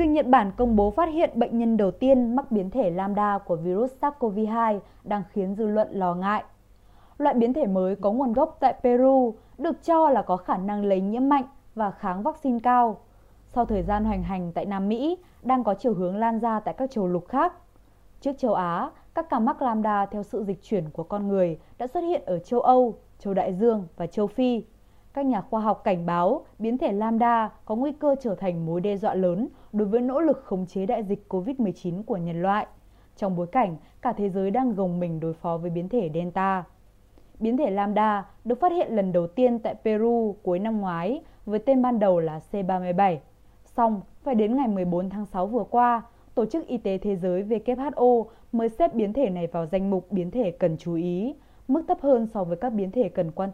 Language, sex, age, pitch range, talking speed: Vietnamese, female, 20-39, 185-245 Hz, 220 wpm